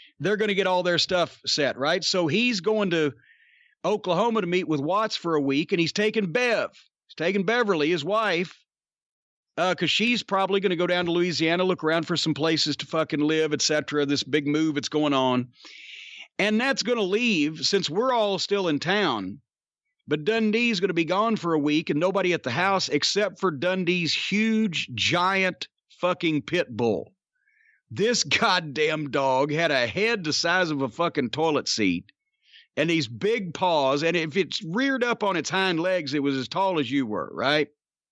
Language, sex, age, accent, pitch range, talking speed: English, male, 40-59, American, 155-215 Hz, 195 wpm